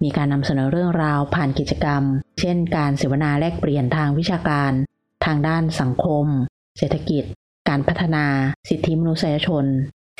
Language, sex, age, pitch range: Thai, female, 30-49, 140-165 Hz